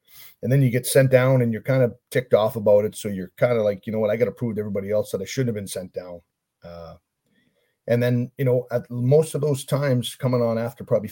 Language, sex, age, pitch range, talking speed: English, male, 40-59, 110-130 Hz, 270 wpm